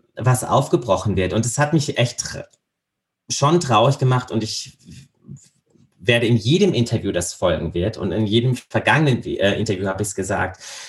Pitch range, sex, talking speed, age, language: 105-140 Hz, male, 160 wpm, 30-49, German